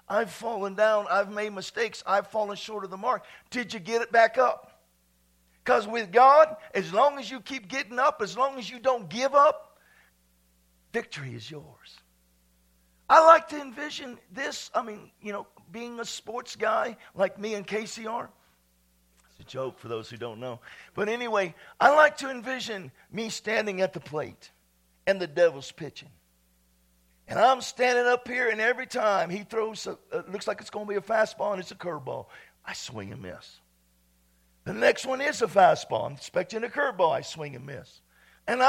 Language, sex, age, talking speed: English, male, 50-69, 190 wpm